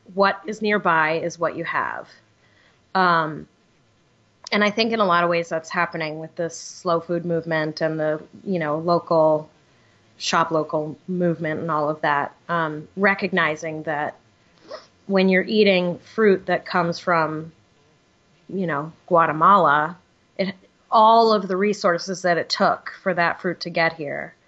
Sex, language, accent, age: female, English, American, 30-49